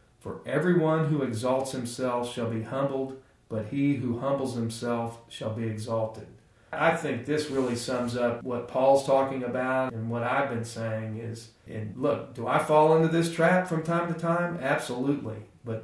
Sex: male